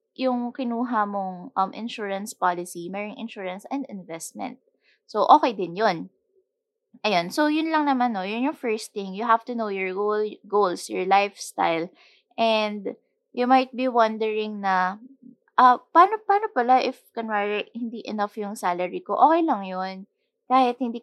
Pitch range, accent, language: 190-255 Hz, Filipino, English